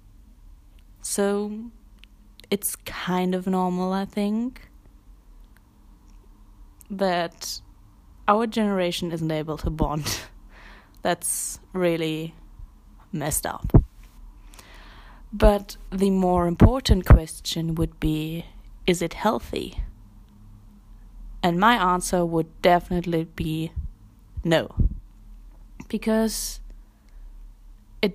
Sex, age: female, 20-39